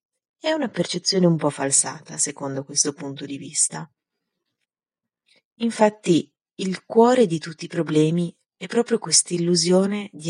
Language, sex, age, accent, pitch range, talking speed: Italian, female, 30-49, native, 165-205 Hz, 135 wpm